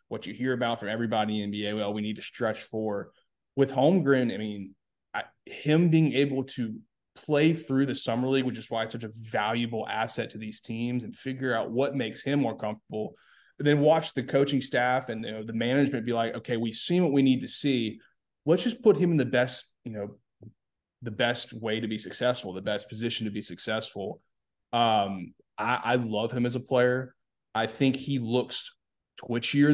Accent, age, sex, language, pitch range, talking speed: American, 20-39, male, English, 110-135 Hz, 200 wpm